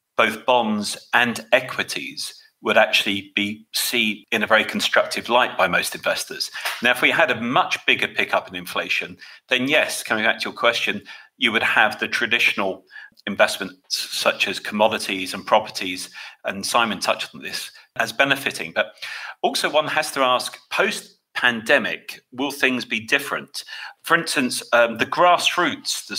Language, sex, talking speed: English, male, 155 wpm